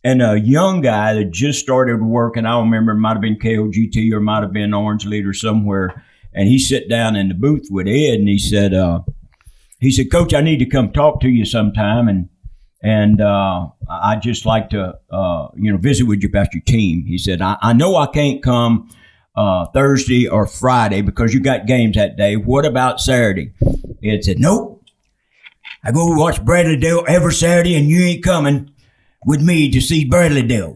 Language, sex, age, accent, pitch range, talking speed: English, male, 60-79, American, 110-160 Hz, 205 wpm